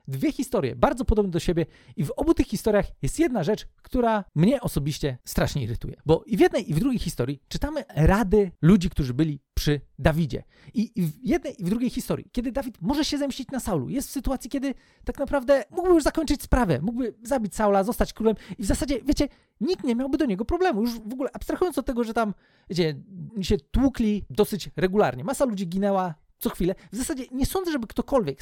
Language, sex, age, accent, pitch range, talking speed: Polish, male, 40-59, native, 180-270 Hz, 205 wpm